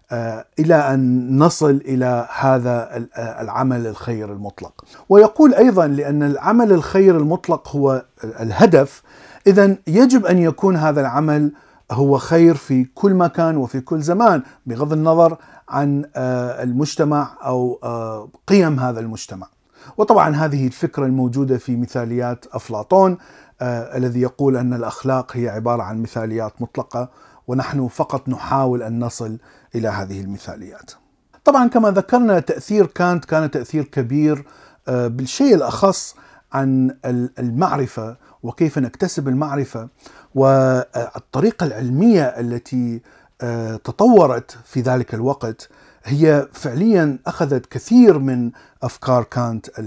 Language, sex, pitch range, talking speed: Arabic, male, 120-160 Hz, 110 wpm